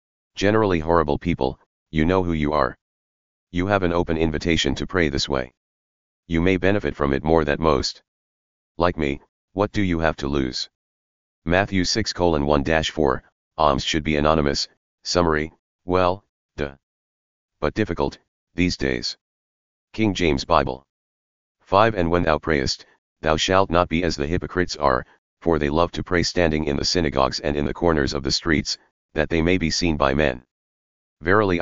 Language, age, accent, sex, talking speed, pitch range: English, 40-59, American, male, 165 wpm, 70-85 Hz